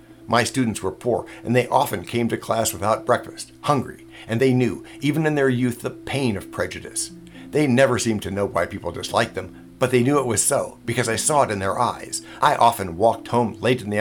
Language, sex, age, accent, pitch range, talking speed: English, male, 60-79, American, 100-125 Hz, 225 wpm